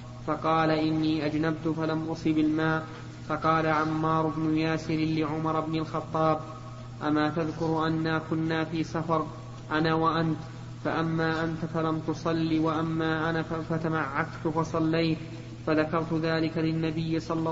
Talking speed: 115 wpm